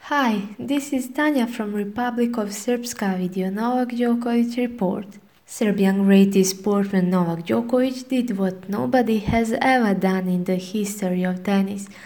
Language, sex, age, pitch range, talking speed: English, female, 20-39, 200-240 Hz, 145 wpm